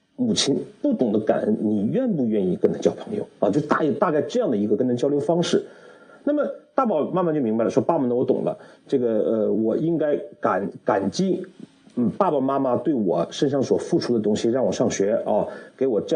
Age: 50-69